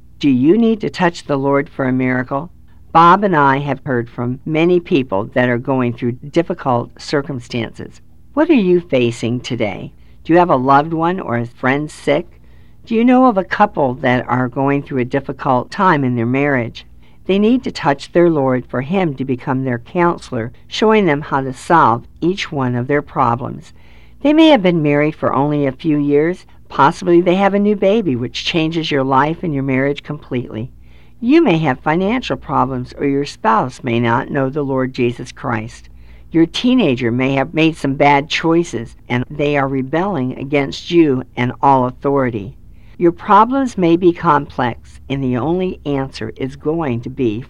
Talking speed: 185 wpm